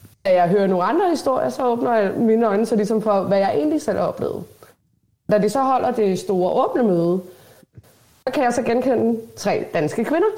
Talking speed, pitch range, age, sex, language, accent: 200 wpm, 180-230 Hz, 20-39, female, Danish, native